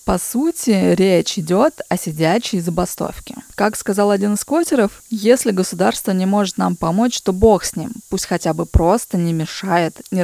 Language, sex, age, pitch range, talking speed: Russian, female, 20-39, 170-215 Hz, 170 wpm